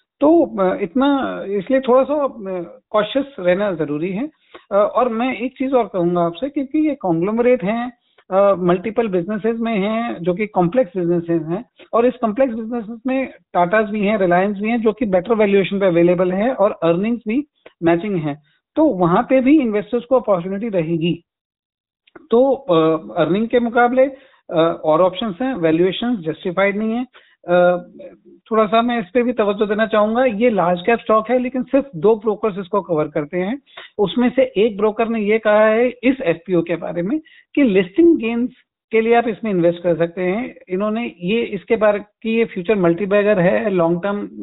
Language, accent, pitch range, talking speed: Hindi, native, 180-245 Hz, 175 wpm